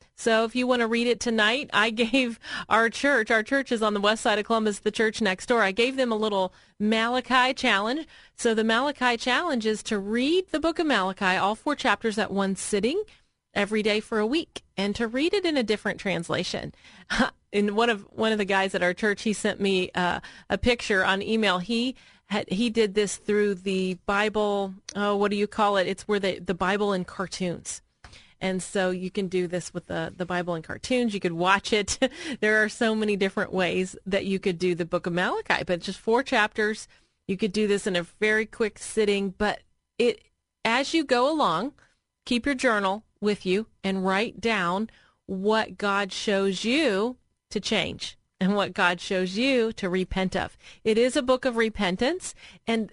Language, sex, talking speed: English, female, 205 wpm